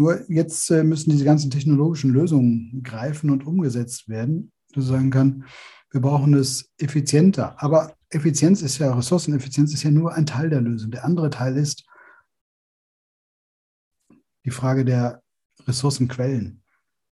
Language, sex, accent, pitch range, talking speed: German, male, German, 125-150 Hz, 135 wpm